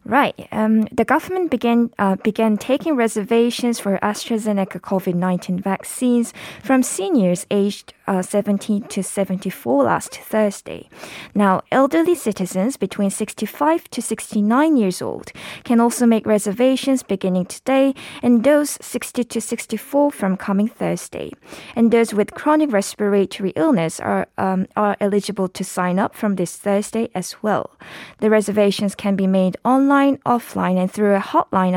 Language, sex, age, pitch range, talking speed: English, female, 20-39, 195-240 Hz, 140 wpm